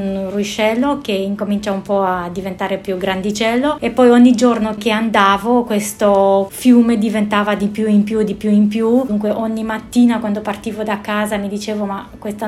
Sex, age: female, 20-39